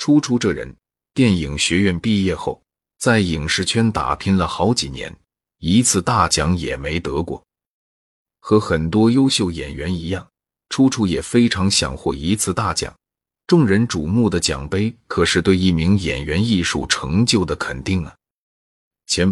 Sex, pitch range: male, 85-110 Hz